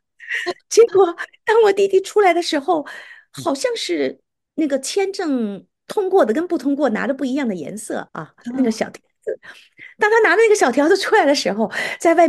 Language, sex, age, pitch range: Chinese, female, 50-69, 230-345 Hz